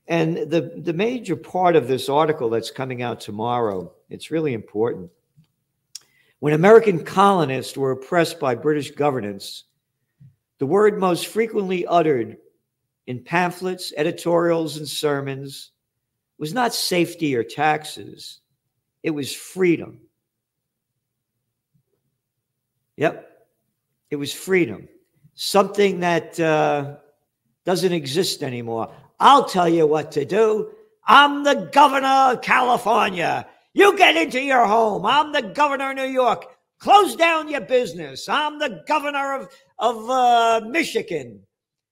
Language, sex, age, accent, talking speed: English, male, 50-69, American, 120 wpm